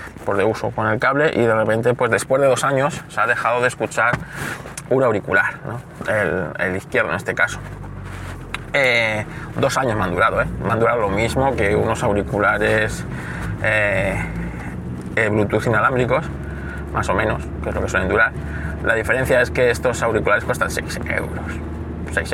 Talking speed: 175 wpm